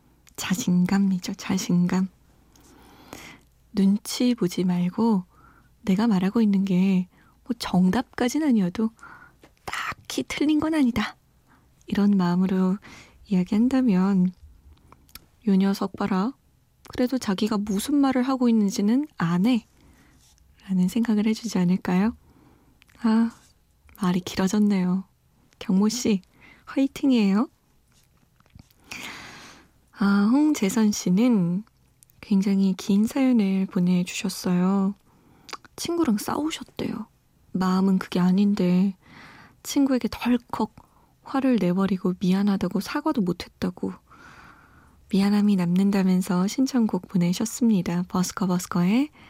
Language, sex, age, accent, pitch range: Korean, female, 20-39, native, 185-230 Hz